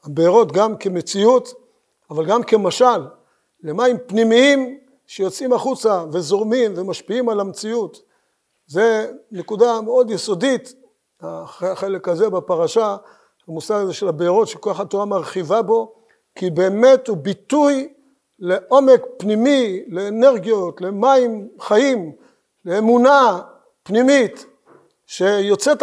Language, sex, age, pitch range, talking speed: Hebrew, male, 50-69, 185-245 Hz, 100 wpm